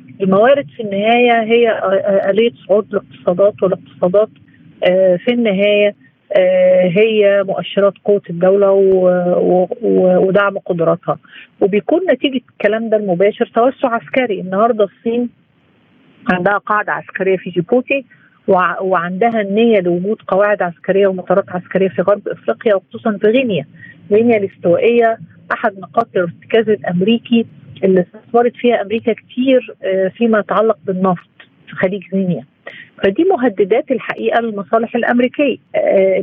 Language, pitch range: Arabic, 185-235 Hz